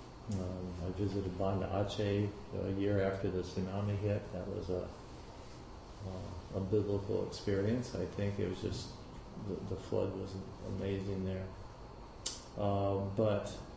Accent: American